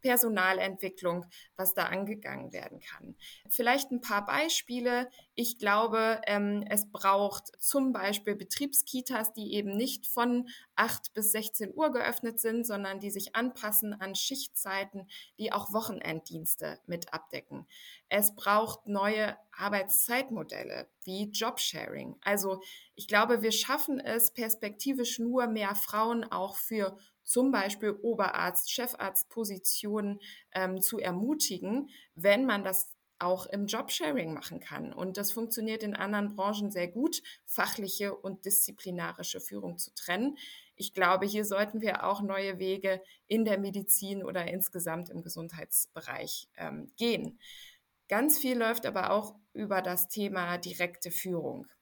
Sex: female